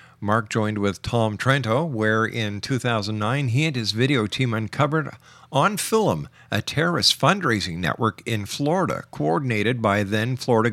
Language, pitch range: English, 105-125 Hz